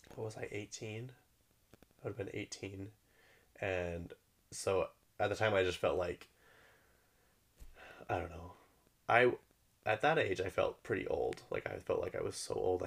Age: 20-39